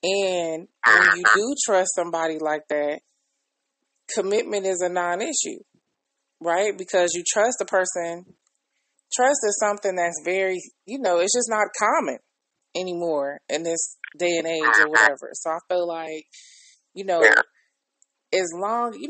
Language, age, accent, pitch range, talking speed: English, 20-39, American, 170-210 Hz, 150 wpm